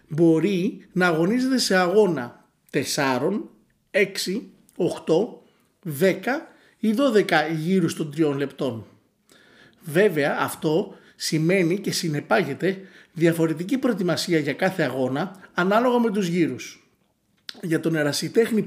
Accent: native